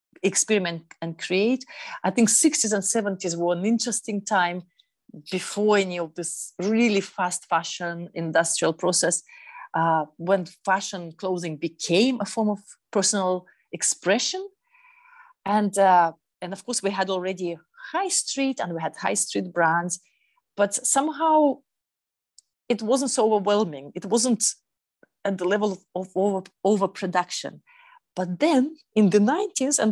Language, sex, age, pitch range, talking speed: English, female, 40-59, 185-250 Hz, 130 wpm